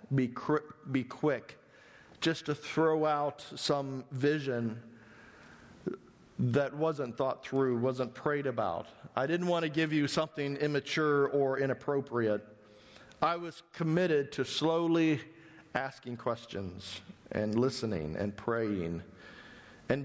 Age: 50-69